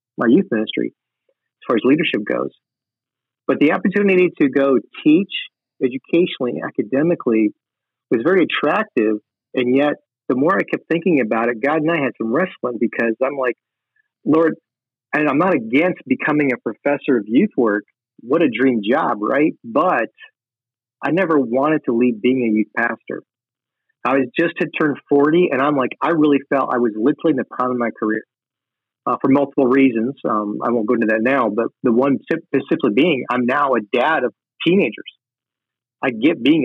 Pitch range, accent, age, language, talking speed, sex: 125-150 Hz, American, 40-59, English, 180 wpm, male